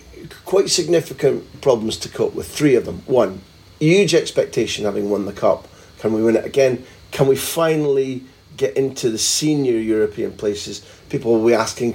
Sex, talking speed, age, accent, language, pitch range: male, 175 wpm, 40-59, British, English, 105-155 Hz